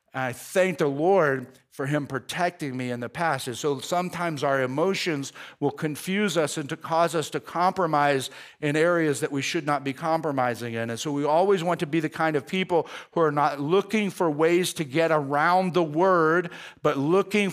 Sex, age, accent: male, 50-69, American